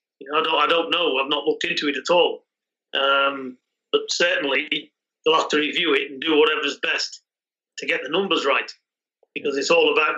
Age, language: 30-49, English